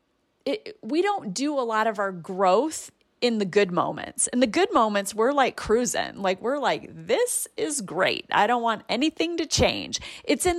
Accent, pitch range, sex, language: American, 200-265 Hz, female, English